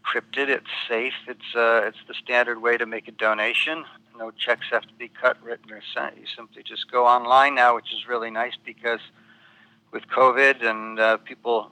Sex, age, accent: male, 60-79, American